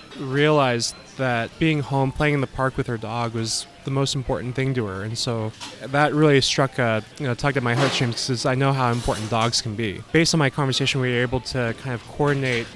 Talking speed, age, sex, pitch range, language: 230 wpm, 20-39, male, 115-140 Hz, English